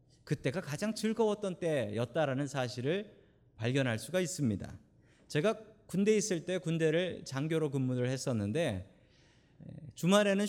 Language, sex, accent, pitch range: Korean, male, native, 125-190 Hz